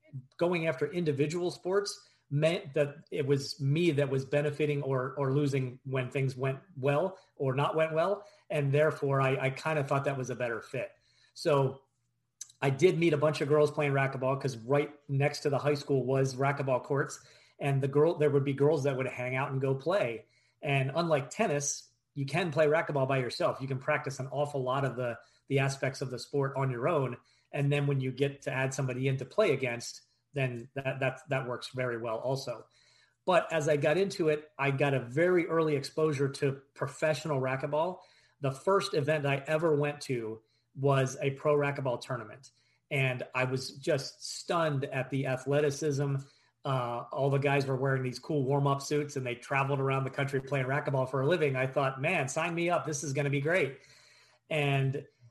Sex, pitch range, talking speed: male, 130-150 Hz, 195 wpm